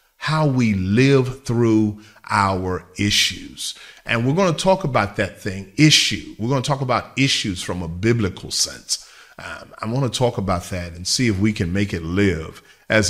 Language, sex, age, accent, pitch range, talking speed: English, male, 40-59, American, 95-120 Hz, 190 wpm